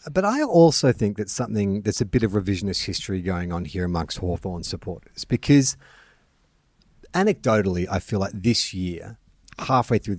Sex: male